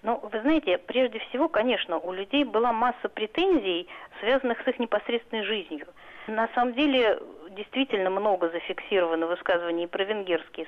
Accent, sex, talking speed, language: native, female, 145 wpm, Russian